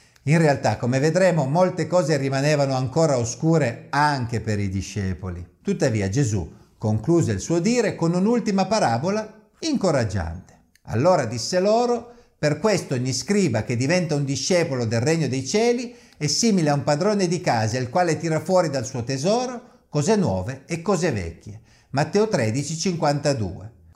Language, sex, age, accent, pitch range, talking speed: Italian, male, 50-69, native, 115-175 Hz, 150 wpm